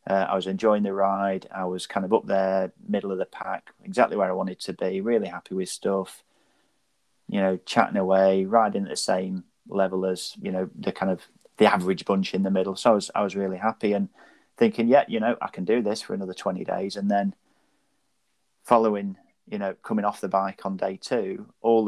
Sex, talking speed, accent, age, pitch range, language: male, 215 wpm, British, 30-49, 95-105 Hz, English